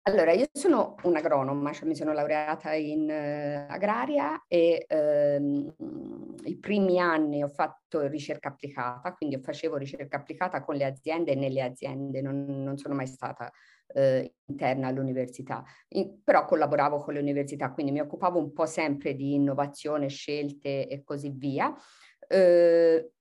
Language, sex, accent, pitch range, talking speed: Italian, female, native, 140-180 Hz, 150 wpm